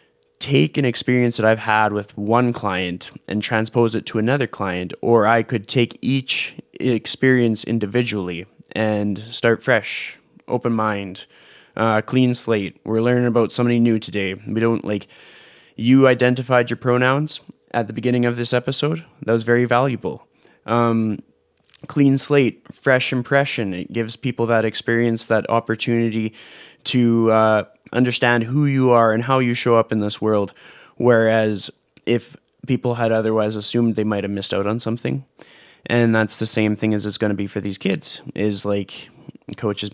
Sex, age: male, 20-39